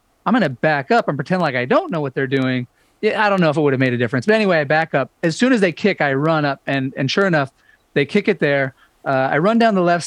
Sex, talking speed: male, 310 wpm